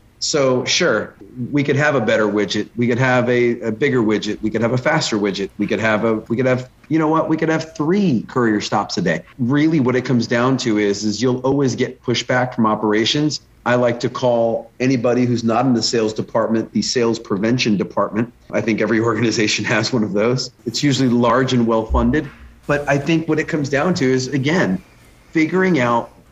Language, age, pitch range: English, 40-59, 115-135 Hz